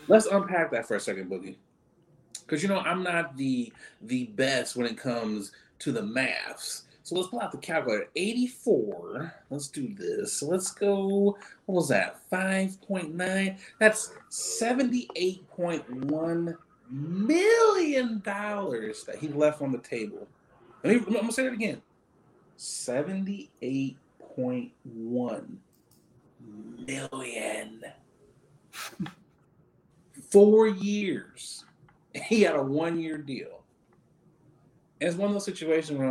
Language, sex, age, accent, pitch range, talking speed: English, male, 30-49, American, 135-205 Hz, 115 wpm